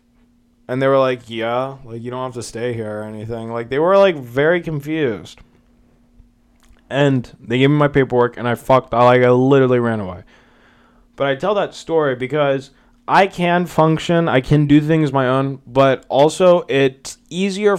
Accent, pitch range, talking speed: American, 120-145 Hz, 180 wpm